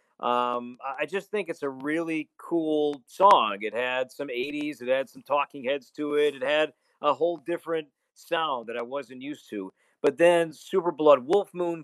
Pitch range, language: 130-170 Hz, English